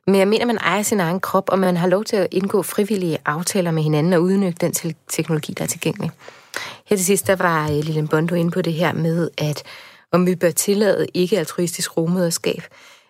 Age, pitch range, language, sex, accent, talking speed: 30-49, 155-185 Hz, Danish, female, native, 210 wpm